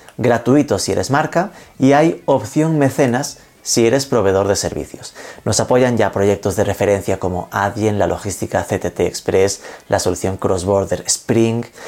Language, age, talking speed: Spanish, 30-49, 150 wpm